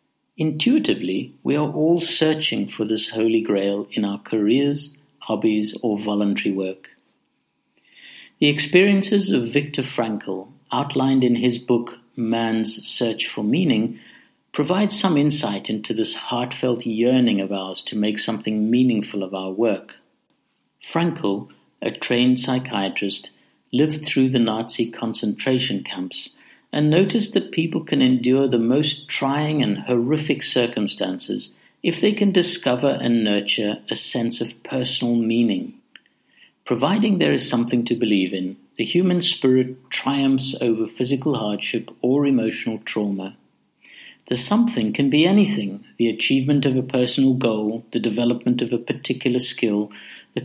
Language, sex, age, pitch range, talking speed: English, male, 60-79, 110-150 Hz, 135 wpm